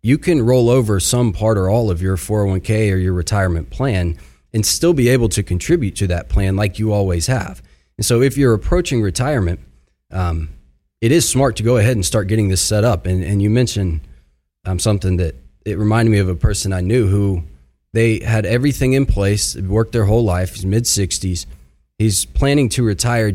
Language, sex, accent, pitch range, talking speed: English, male, American, 90-120 Hz, 200 wpm